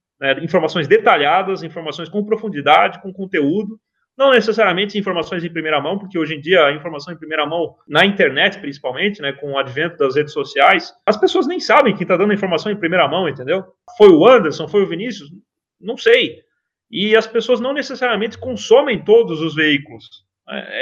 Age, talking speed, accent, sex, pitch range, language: 30-49, 185 wpm, Brazilian, male, 165-225 Hz, Portuguese